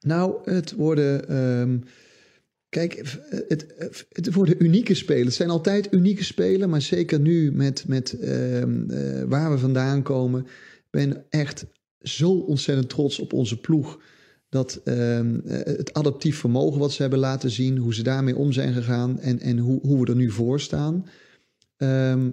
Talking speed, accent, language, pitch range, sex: 165 wpm, Dutch, Dutch, 125-150 Hz, male